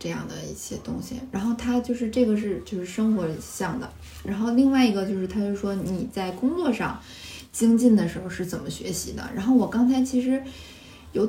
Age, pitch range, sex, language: 20-39, 190-240 Hz, female, Chinese